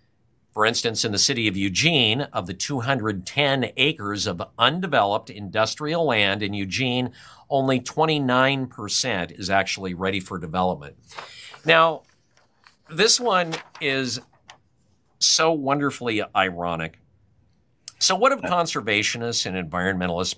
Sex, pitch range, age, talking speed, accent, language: male, 100-145 Hz, 50-69, 110 wpm, American, English